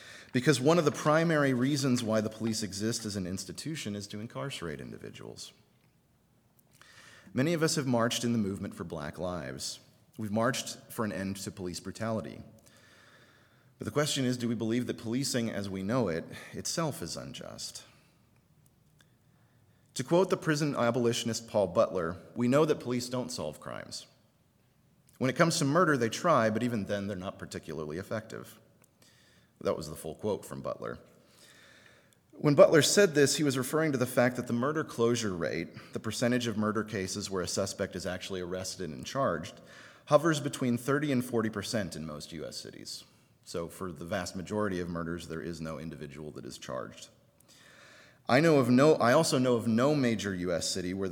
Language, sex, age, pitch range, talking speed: English, male, 30-49, 95-130 Hz, 175 wpm